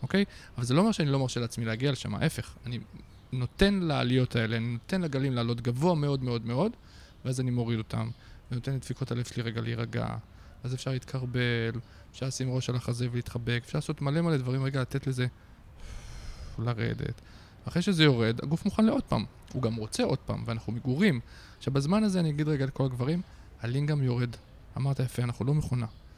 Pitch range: 115-145 Hz